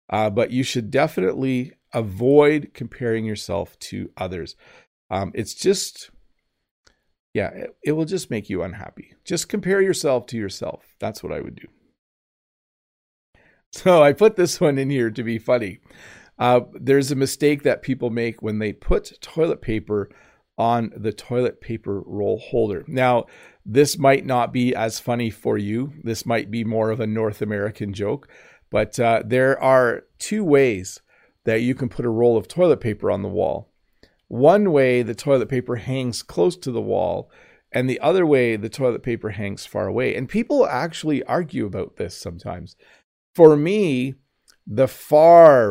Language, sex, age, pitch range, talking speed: English, male, 40-59, 110-140 Hz, 165 wpm